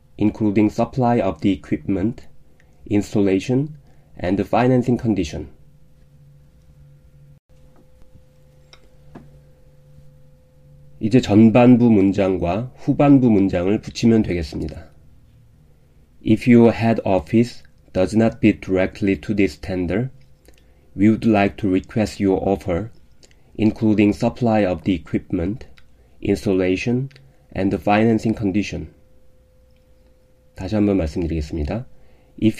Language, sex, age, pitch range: Korean, male, 30-49, 90-110 Hz